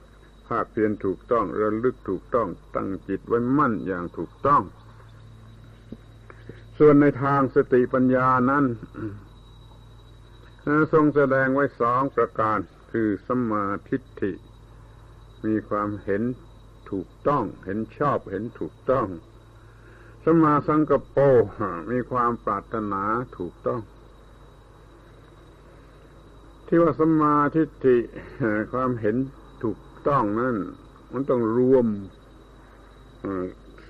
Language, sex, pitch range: Thai, male, 105-130 Hz